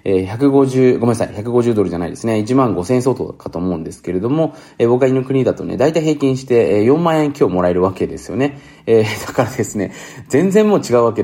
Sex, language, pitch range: male, Japanese, 95-140 Hz